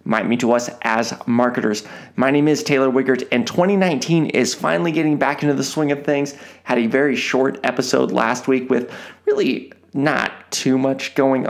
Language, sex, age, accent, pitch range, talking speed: English, male, 30-49, American, 125-155 Hz, 185 wpm